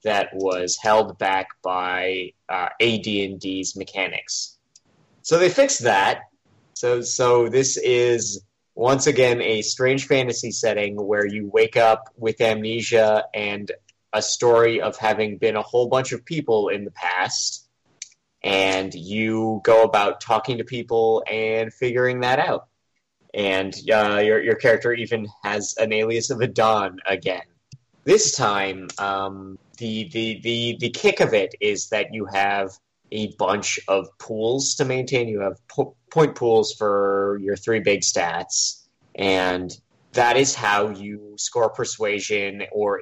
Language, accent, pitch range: English, American, 100-115 Hz